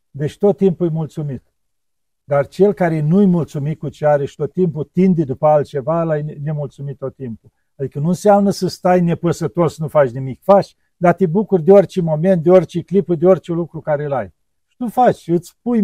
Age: 50-69